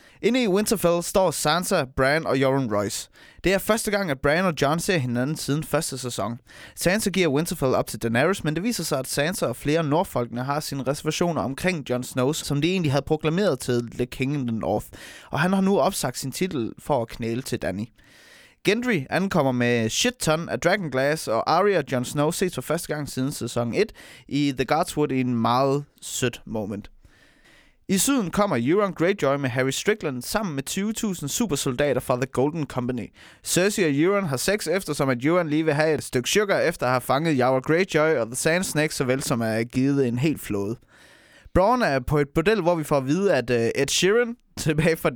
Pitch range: 130-175 Hz